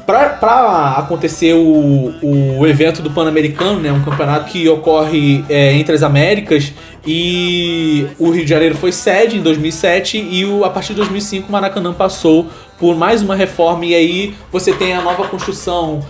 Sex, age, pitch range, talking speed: male, 20-39, 150-175 Hz, 170 wpm